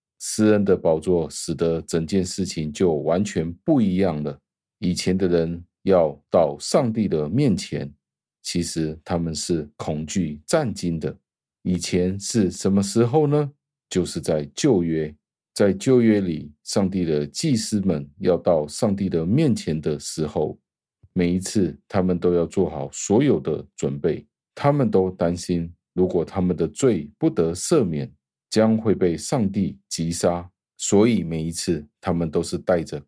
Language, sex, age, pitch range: Chinese, male, 50-69, 80-95 Hz